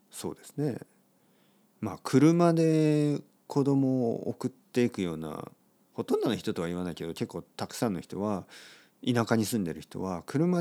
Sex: male